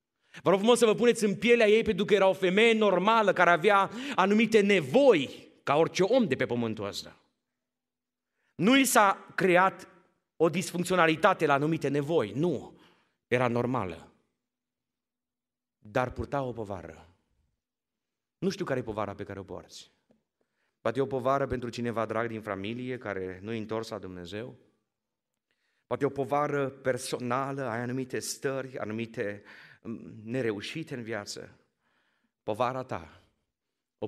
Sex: male